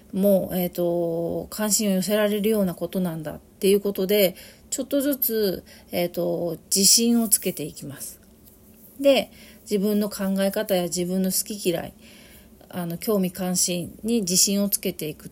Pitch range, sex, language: 185-225 Hz, female, Japanese